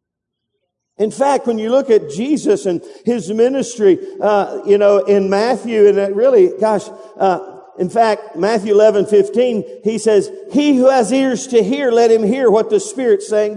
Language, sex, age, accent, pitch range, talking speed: English, male, 50-69, American, 215-255 Hz, 175 wpm